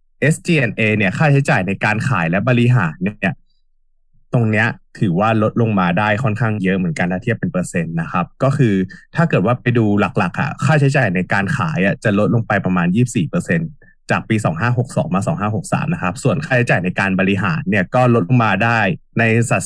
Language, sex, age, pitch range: Thai, male, 20-39, 105-145 Hz